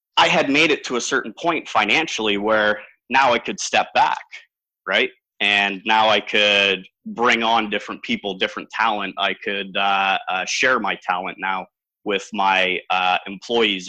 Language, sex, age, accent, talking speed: English, male, 30-49, American, 165 wpm